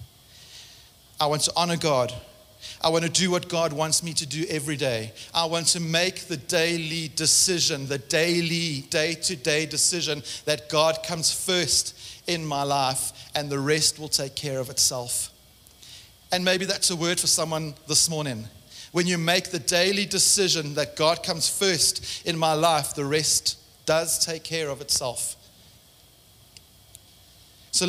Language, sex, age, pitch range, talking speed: English, male, 40-59, 120-175 Hz, 155 wpm